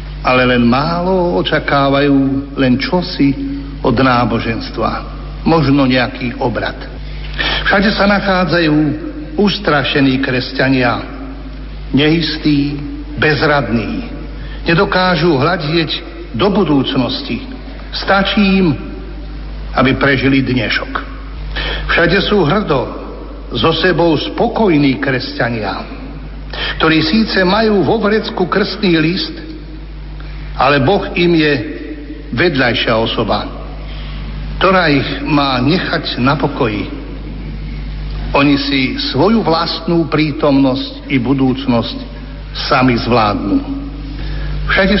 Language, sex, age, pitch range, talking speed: Slovak, male, 60-79, 135-170 Hz, 85 wpm